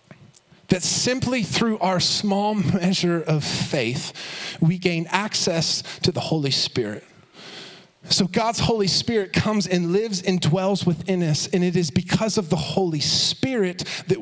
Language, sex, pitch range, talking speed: English, male, 155-185 Hz, 150 wpm